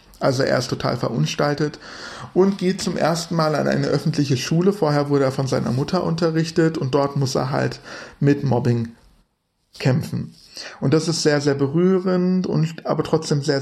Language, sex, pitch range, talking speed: English, male, 140-170 Hz, 170 wpm